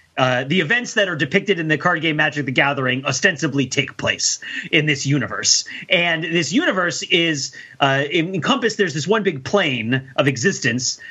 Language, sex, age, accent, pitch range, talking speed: English, male, 30-49, American, 140-200 Hz, 175 wpm